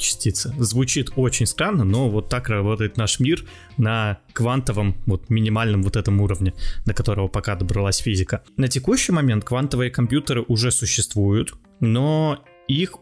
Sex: male